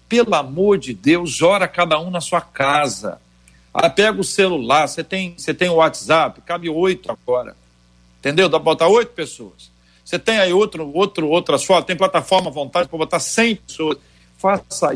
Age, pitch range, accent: 60-79, 135-185 Hz, Brazilian